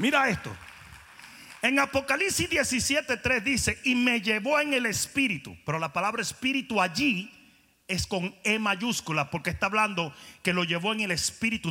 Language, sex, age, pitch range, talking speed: Spanish, male, 30-49, 200-275 Hz, 160 wpm